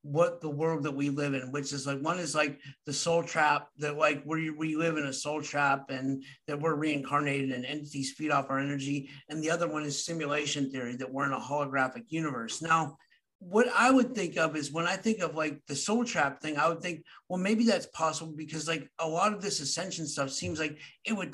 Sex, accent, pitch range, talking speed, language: male, American, 140-165 Hz, 235 wpm, English